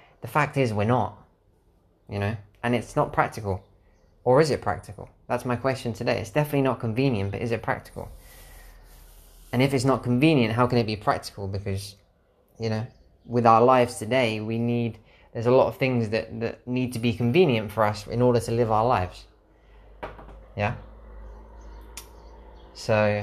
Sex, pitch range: male, 100-120 Hz